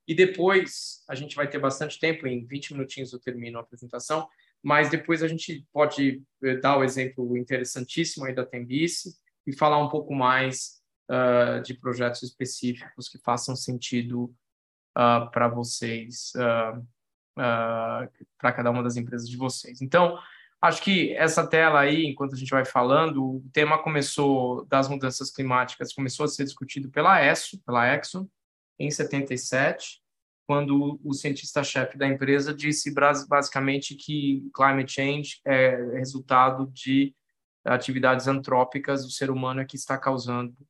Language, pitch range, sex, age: Portuguese, 130-150 Hz, male, 20-39